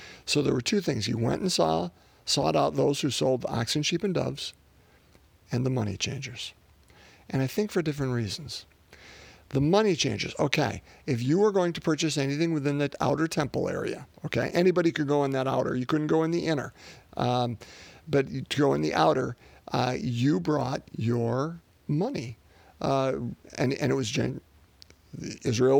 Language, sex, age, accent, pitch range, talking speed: English, male, 50-69, American, 120-160 Hz, 175 wpm